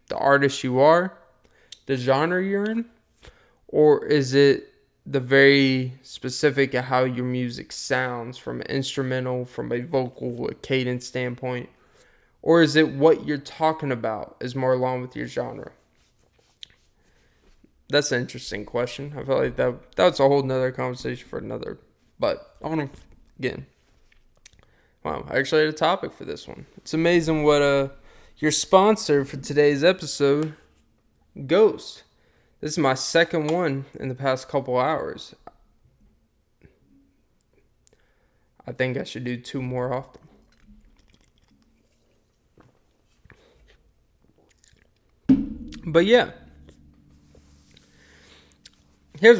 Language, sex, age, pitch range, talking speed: English, male, 20-39, 125-150 Hz, 120 wpm